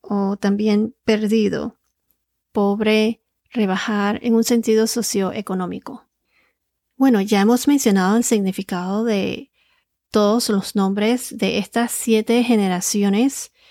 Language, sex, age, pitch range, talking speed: Spanish, female, 30-49, 200-235 Hz, 100 wpm